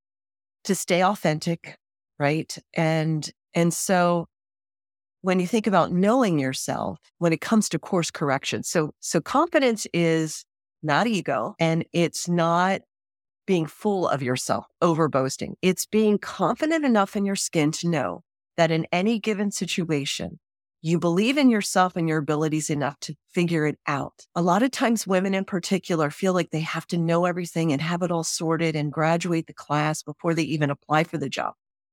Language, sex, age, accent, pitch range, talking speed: English, female, 40-59, American, 155-195 Hz, 170 wpm